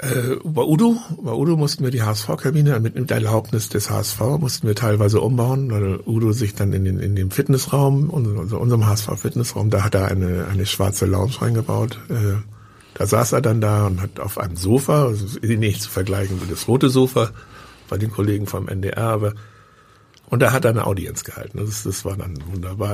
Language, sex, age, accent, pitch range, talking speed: German, male, 60-79, German, 100-125 Hz, 195 wpm